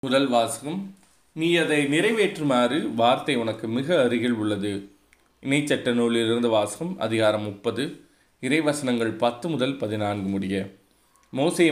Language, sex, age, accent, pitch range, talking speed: Tamil, male, 30-49, native, 110-145 Hz, 115 wpm